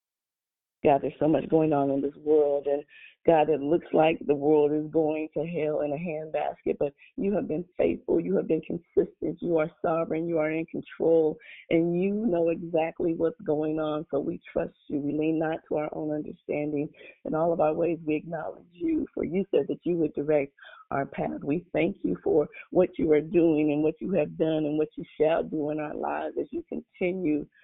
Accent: American